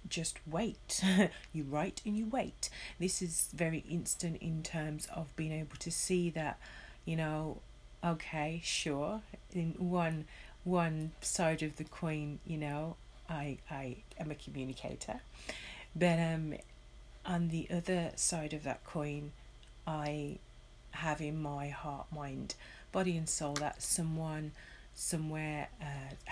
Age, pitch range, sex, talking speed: 30-49, 145-170 Hz, female, 135 wpm